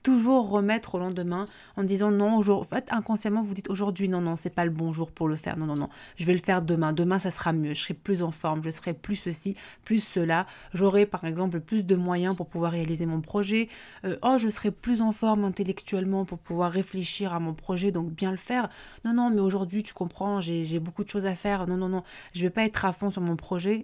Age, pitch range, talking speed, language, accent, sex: 20-39, 175-215 Hz, 255 wpm, French, French, female